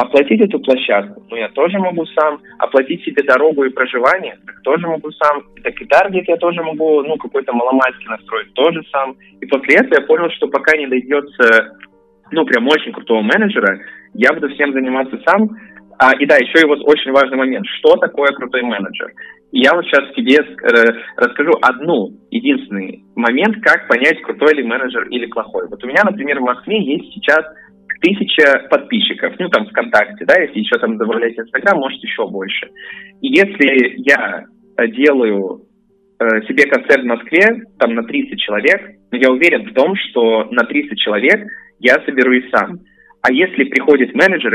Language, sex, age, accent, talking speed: Russian, male, 20-39, native, 170 wpm